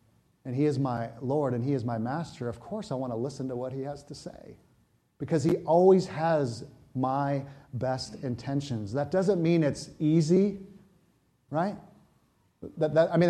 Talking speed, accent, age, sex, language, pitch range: 175 wpm, American, 30-49, male, English, 120-150 Hz